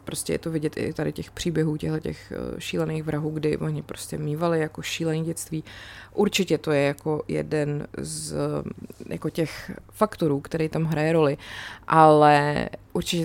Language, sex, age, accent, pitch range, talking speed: Czech, female, 20-39, native, 145-175 Hz, 150 wpm